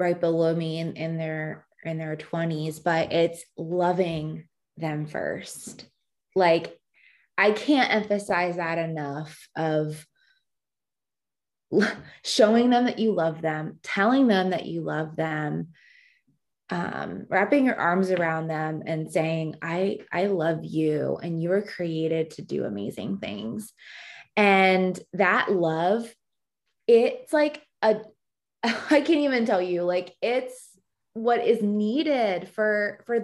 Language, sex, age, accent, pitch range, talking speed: English, female, 20-39, American, 170-220 Hz, 130 wpm